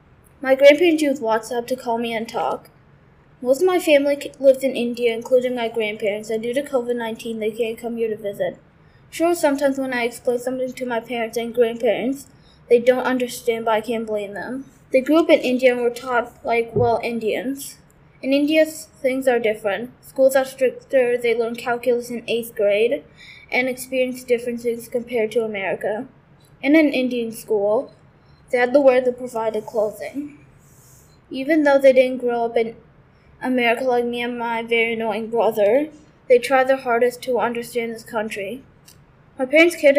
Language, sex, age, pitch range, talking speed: English, female, 10-29, 230-270 Hz, 175 wpm